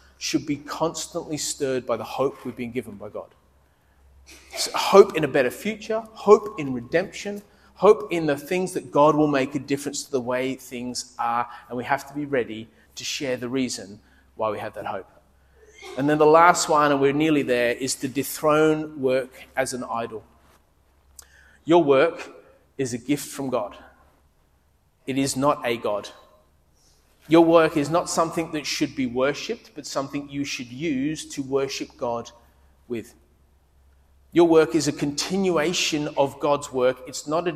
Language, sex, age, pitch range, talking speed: English, male, 30-49, 120-155 Hz, 175 wpm